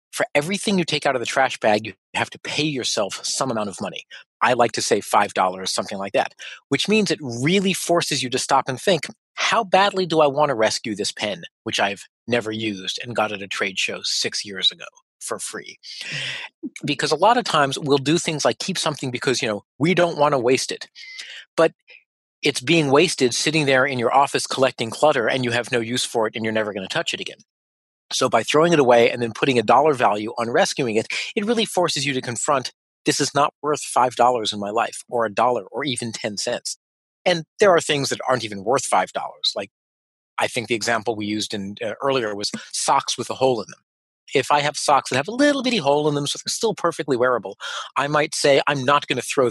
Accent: American